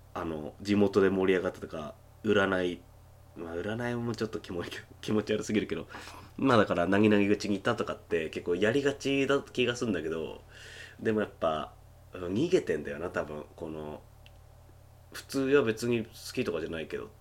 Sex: male